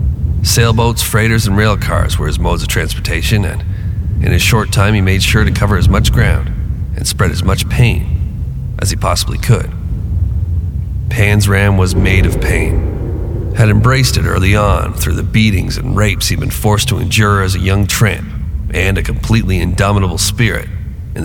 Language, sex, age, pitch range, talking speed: English, male, 40-59, 90-105 Hz, 180 wpm